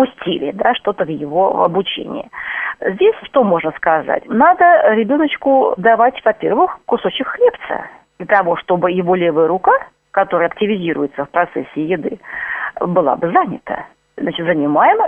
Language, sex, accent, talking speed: Russian, female, native, 125 wpm